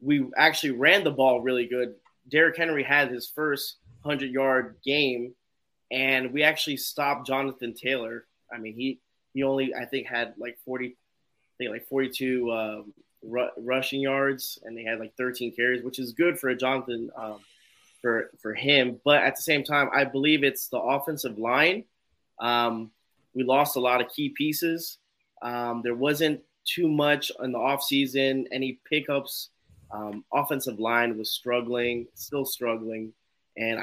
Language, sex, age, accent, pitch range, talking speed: English, male, 20-39, American, 120-135 Hz, 165 wpm